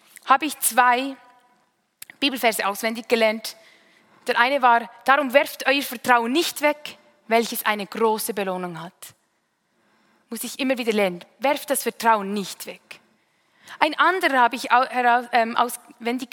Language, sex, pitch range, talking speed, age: German, female, 230-295 Hz, 130 wpm, 20-39